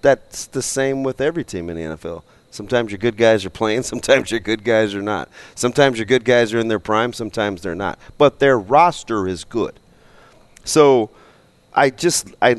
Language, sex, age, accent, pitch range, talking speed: English, male, 30-49, American, 100-140 Hz, 195 wpm